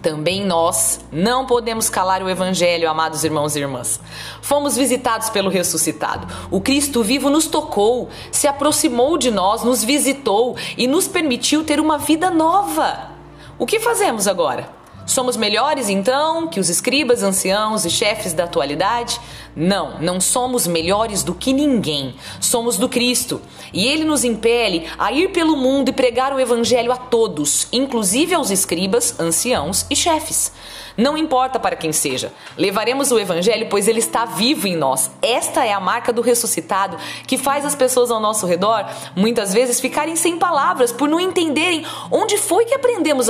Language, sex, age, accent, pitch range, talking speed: Portuguese, female, 40-59, Brazilian, 190-275 Hz, 160 wpm